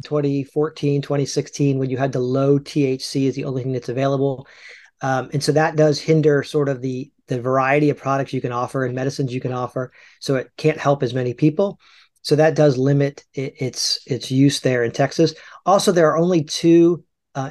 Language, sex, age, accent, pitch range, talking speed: English, male, 40-59, American, 130-150 Hz, 200 wpm